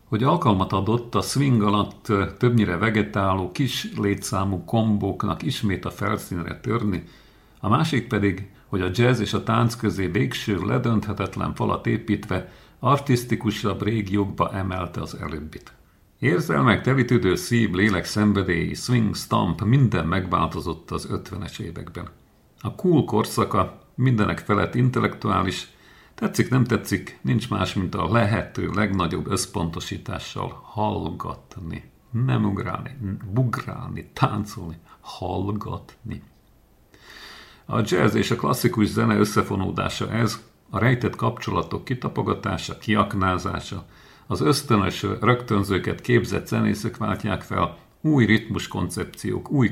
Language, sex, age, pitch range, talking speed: Hungarian, male, 50-69, 95-115 Hz, 110 wpm